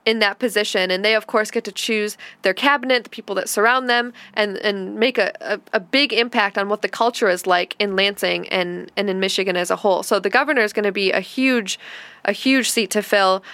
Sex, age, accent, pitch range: female, 10-29, American, 190-230 Hz